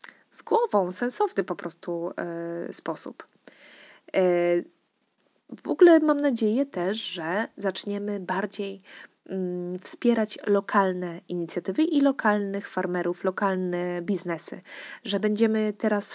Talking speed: 95 wpm